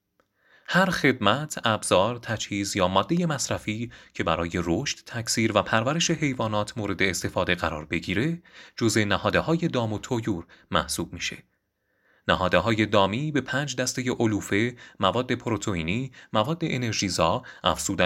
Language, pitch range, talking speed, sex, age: Persian, 100-140 Hz, 115 wpm, male, 30-49